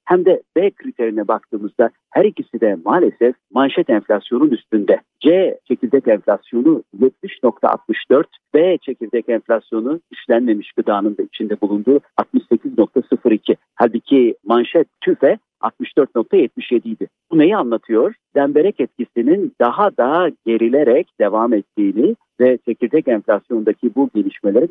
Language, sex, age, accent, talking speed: Turkish, male, 50-69, native, 110 wpm